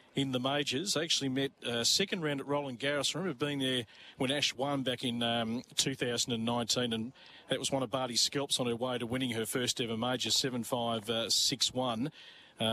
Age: 40-59